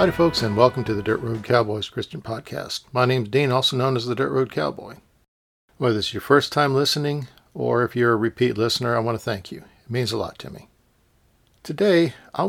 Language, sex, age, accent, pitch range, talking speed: English, male, 50-69, American, 110-135 Hz, 225 wpm